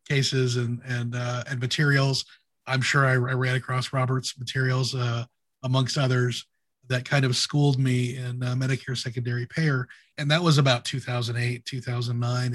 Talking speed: 155 wpm